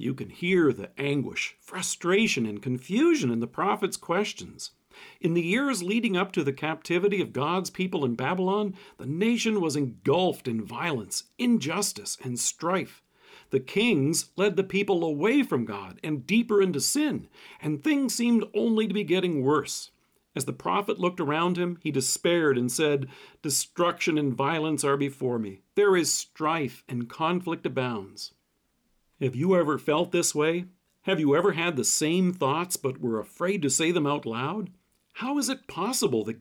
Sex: male